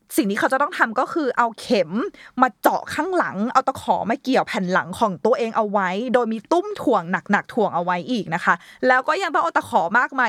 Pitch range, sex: 190-255 Hz, female